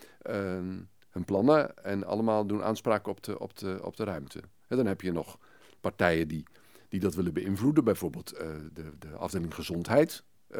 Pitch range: 90-115 Hz